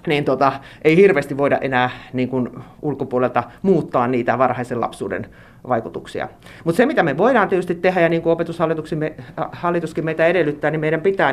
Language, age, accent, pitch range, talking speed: Finnish, 30-49, native, 135-175 Hz, 150 wpm